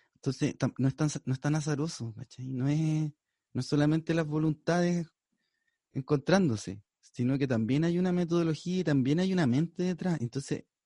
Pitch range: 125-180 Hz